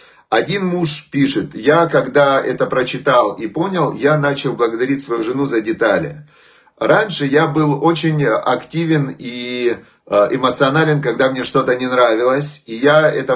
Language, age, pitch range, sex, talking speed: Russian, 30-49, 125-160 Hz, male, 140 wpm